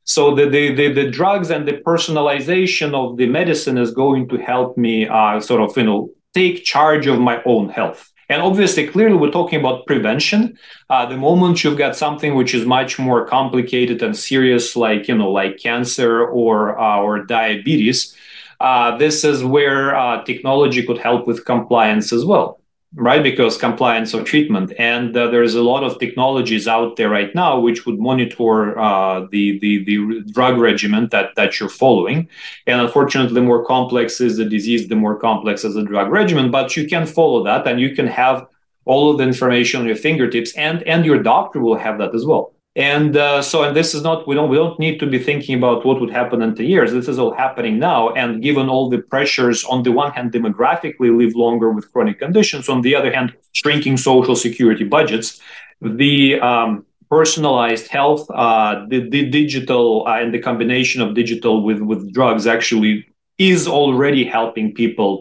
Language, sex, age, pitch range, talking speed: Portuguese, male, 30-49, 115-145 Hz, 190 wpm